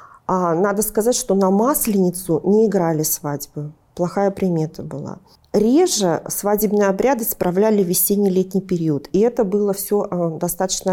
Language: Russian